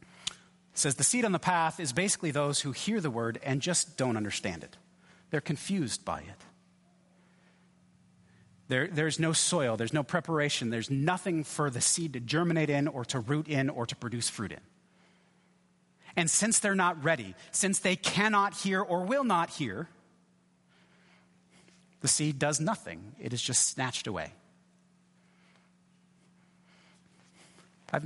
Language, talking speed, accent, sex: English, 150 wpm, American, male